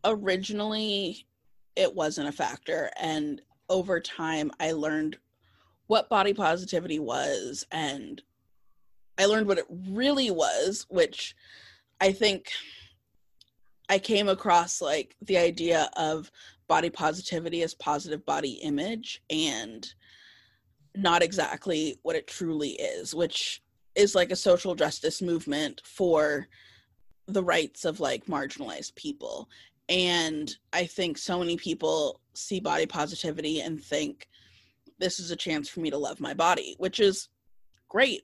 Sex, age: female, 20-39